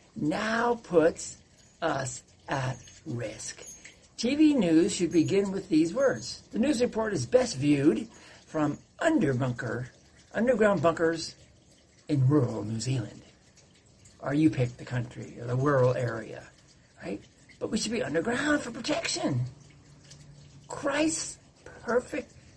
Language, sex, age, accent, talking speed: English, male, 60-79, American, 120 wpm